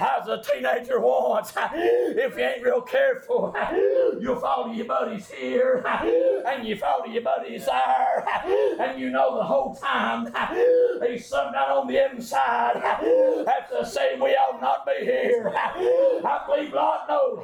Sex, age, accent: male, 50-69, American